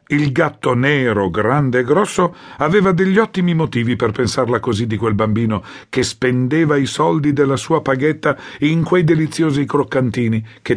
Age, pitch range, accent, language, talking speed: 50-69, 125-180 Hz, native, Italian, 155 wpm